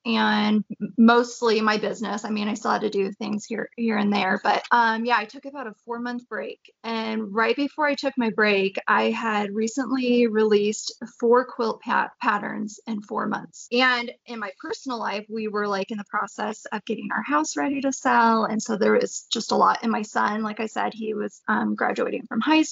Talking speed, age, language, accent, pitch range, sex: 210 wpm, 20-39, English, American, 215-250 Hz, female